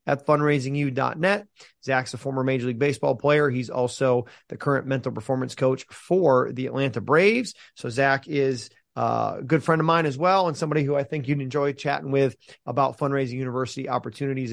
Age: 30-49